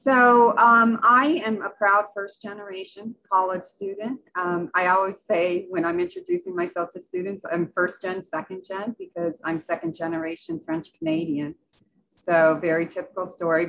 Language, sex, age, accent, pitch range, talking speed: English, female, 40-59, American, 160-200 Hz, 130 wpm